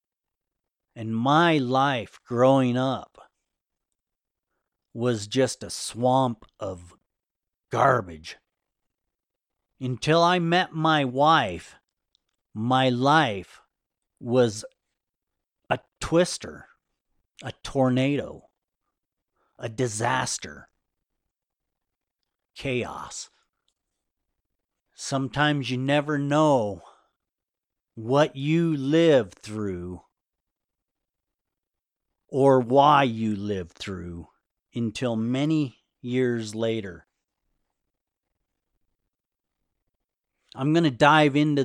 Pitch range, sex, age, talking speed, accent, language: 105-140 Hz, male, 50-69, 70 wpm, American, English